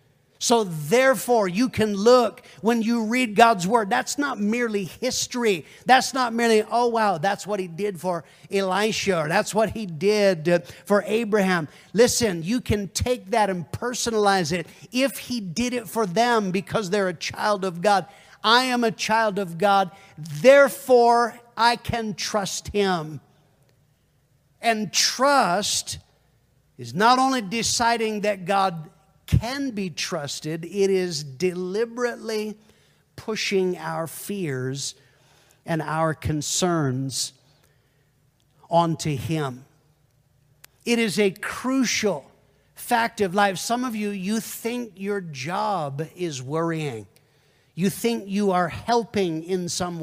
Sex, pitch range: male, 155-220 Hz